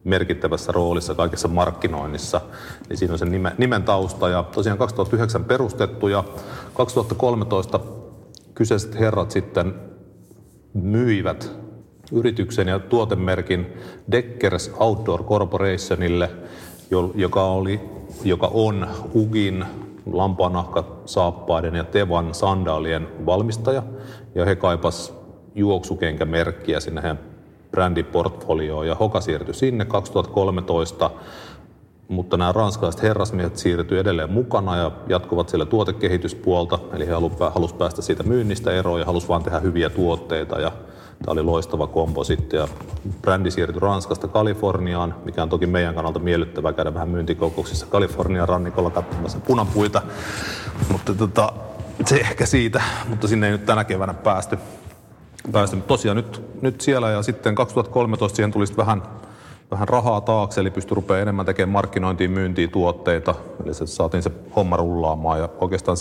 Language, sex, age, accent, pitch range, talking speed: Finnish, male, 40-59, native, 85-110 Hz, 125 wpm